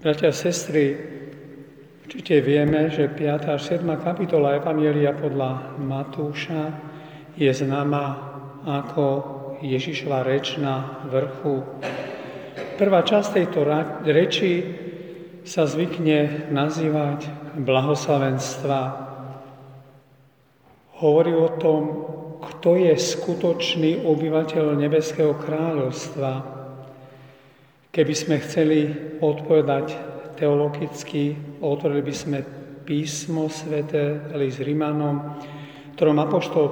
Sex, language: male, Slovak